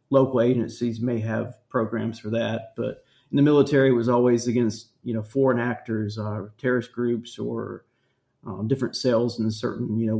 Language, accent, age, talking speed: English, American, 30-49, 180 wpm